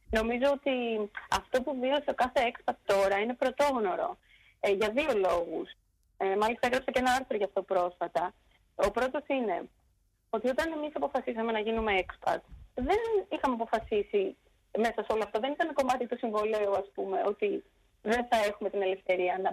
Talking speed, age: 165 wpm, 30-49